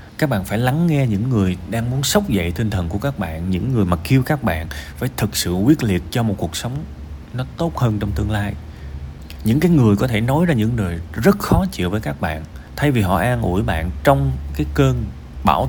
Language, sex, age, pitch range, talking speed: Vietnamese, male, 20-39, 75-115 Hz, 235 wpm